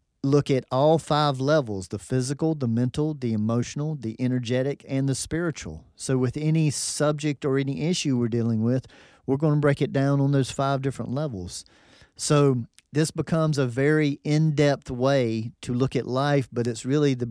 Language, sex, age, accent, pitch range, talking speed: English, male, 40-59, American, 120-145 Hz, 180 wpm